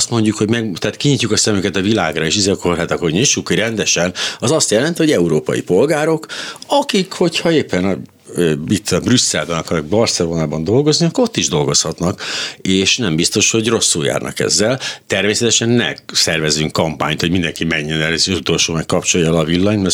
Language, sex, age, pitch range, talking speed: Hungarian, male, 60-79, 80-110 Hz, 170 wpm